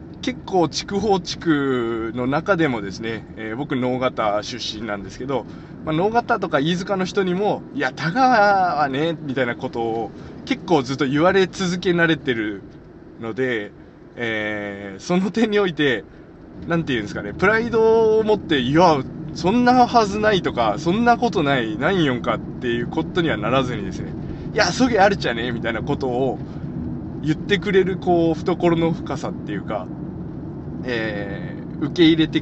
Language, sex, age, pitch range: Japanese, male, 20-39, 130-190 Hz